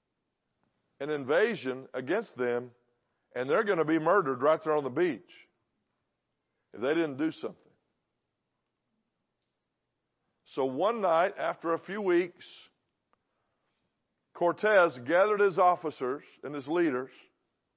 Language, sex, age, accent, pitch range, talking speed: English, male, 50-69, American, 145-190 Hz, 115 wpm